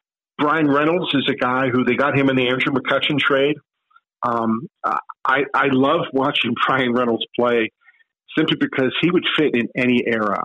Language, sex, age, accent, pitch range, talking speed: English, male, 50-69, American, 120-160 Hz, 170 wpm